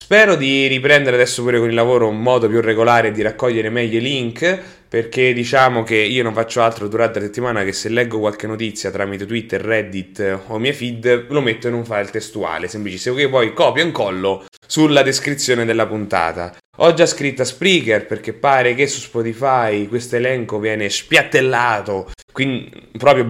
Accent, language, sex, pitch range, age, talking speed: Italian, English, male, 110-135 Hz, 20-39, 180 wpm